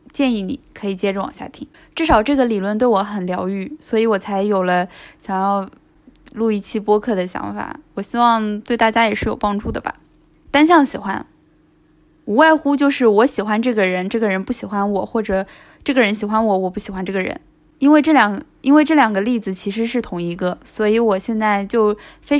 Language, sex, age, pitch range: Chinese, female, 10-29, 195-255 Hz